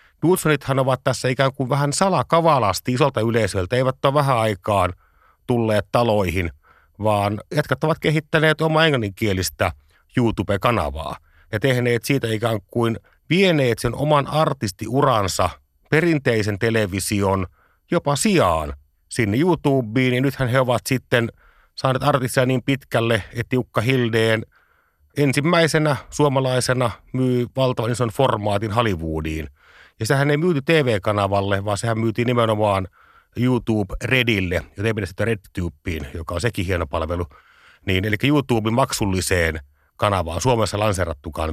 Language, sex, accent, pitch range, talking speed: Finnish, male, native, 100-135 Hz, 120 wpm